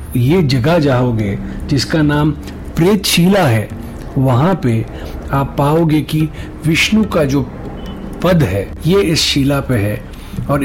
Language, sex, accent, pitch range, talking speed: Hindi, male, native, 115-160 Hz, 135 wpm